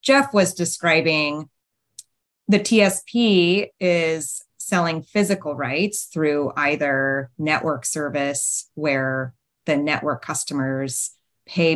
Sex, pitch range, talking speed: female, 140-175 Hz, 90 wpm